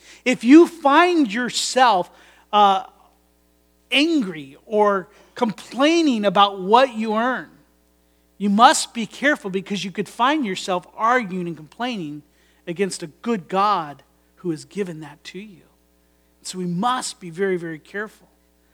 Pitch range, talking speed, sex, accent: 185-250 Hz, 130 wpm, male, American